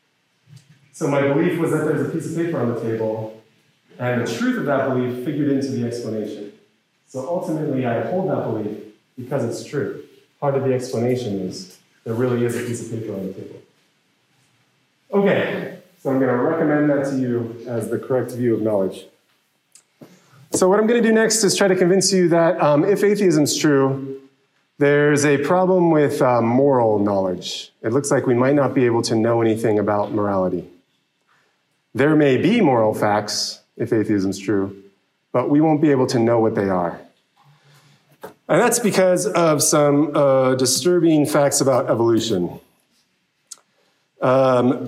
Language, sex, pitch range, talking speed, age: English, male, 120-160 Hz, 170 wpm, 30-49